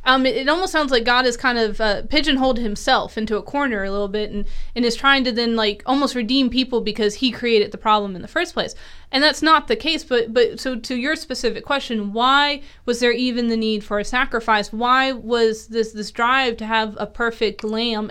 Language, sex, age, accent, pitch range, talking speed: English, female, 20-39, American, 220-280 Hz, 230 wpm